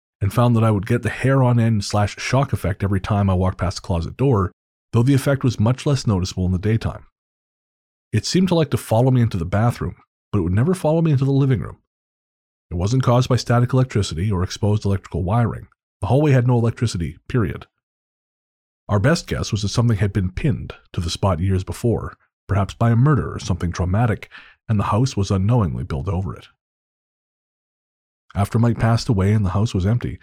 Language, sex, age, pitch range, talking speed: English, male, 30-49, 95-125 Hz, 210 wpm